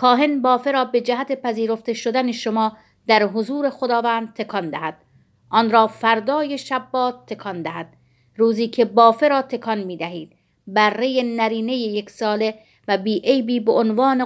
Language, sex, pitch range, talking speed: Persian, female, 210-245 Hz, 150 wpm